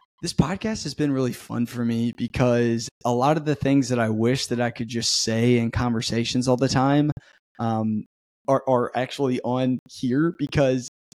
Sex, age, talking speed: male, 20-39, 185 wpm